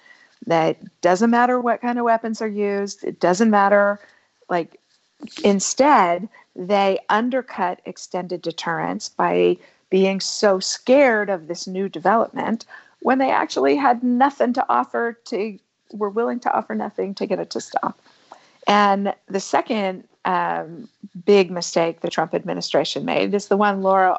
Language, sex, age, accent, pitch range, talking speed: English, female, 50-69, American, 185-230 Hz, 150 wpm